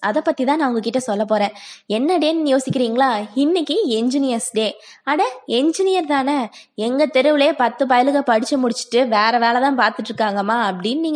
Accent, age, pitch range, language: native, 20-39, 225-315 Hz, Tamil